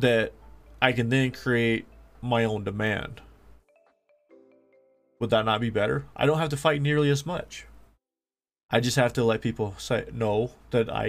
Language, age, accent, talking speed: English, 20-39, American, 160 wpm